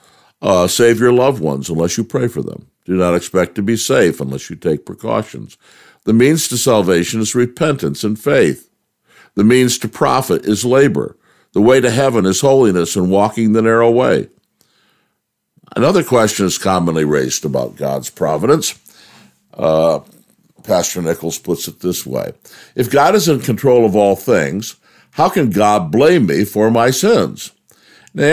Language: English